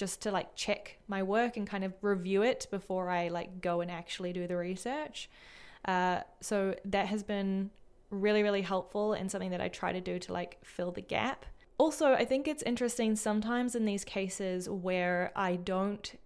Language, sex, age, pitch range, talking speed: English, female, 20-39, 185-215 Hz, 190 wpm